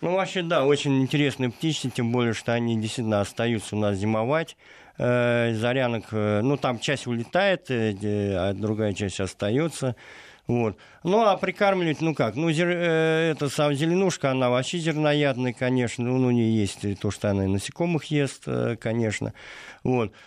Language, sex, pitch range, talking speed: Russian, male, 105-140 Hz, 155 wpm